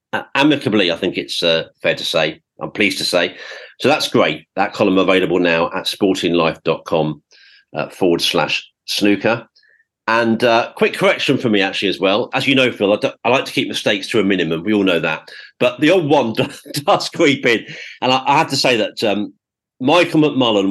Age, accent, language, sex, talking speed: 40-59, British, English, male, 205 wpm